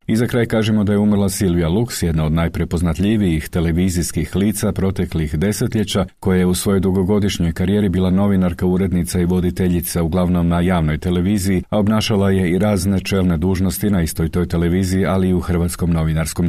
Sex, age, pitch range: male, 40-59, 85-100 Hz